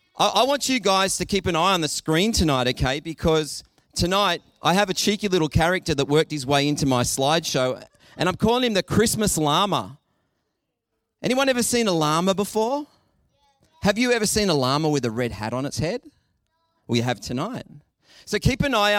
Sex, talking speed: male, 195 wpm